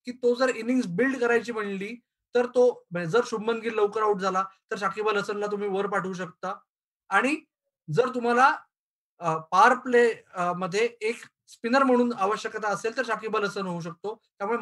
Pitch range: 195-235 Hz